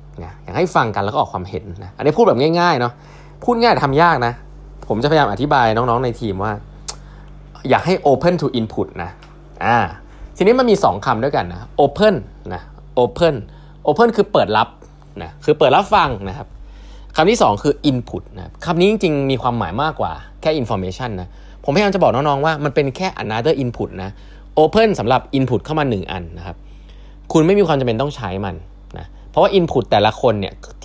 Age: 20-39